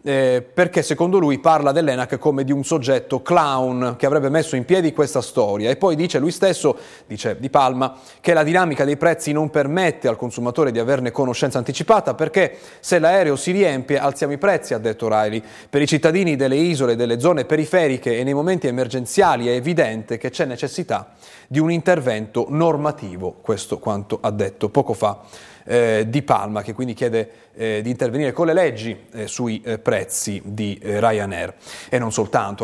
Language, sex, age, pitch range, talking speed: Italian, male, 30-49, 115-160 Hz, 180 wpm